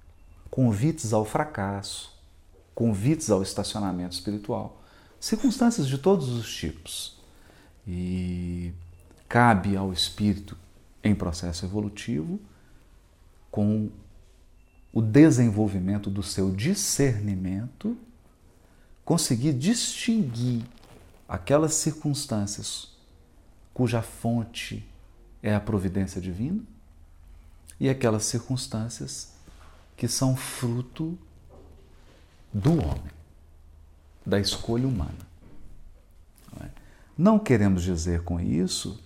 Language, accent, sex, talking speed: Portuguese, Brazilian, male, 80 wpm